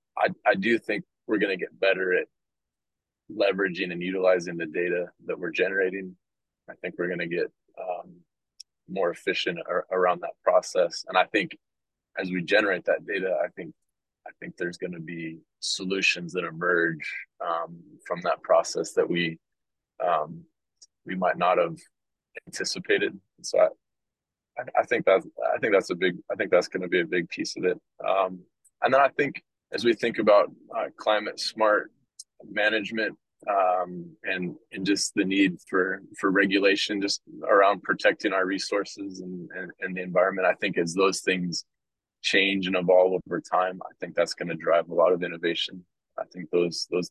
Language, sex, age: English, male, 20-39